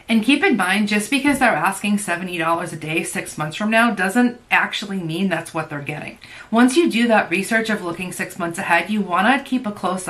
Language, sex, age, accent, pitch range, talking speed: English, female, 30-49, American, 165-215 Hz, 225 wpm